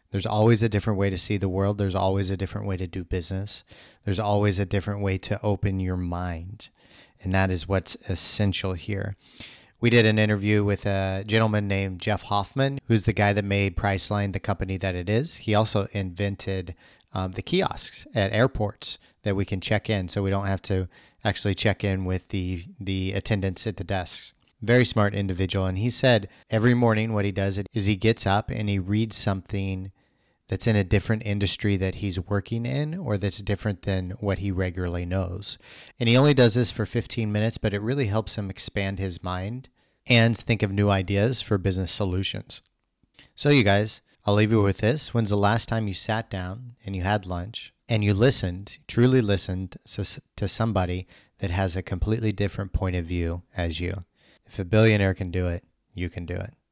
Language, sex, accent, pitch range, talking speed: English, male, American, 95-110 Hz, 200 wpm